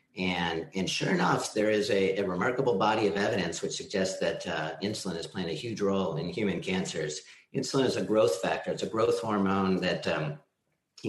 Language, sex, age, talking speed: English, male, 50-69, 200 wpm